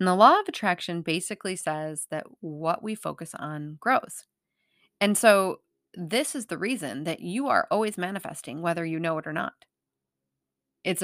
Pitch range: 165-225 Hz